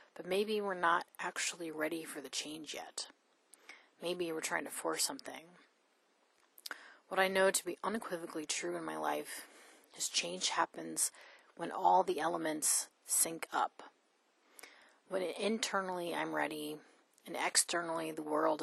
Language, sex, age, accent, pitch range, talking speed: English, female, 30-49, American, 155-185 Hz, 140 wpm